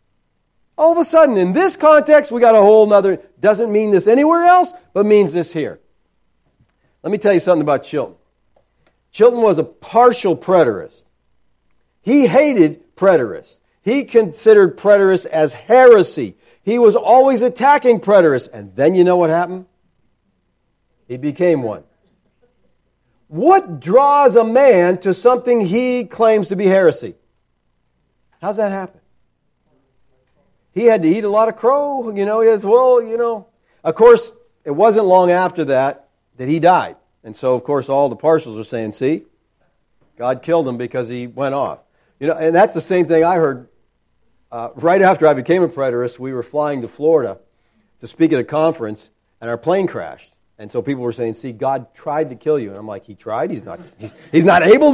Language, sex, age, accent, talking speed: English, male, 50-69, American, 180 wpm